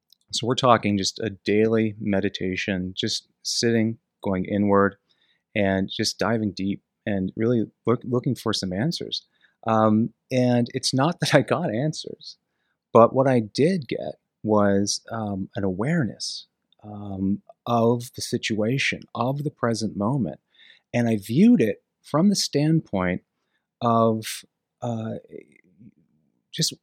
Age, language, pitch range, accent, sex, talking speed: 30-49, English, 105-135 Hz, American, male, 125 wpm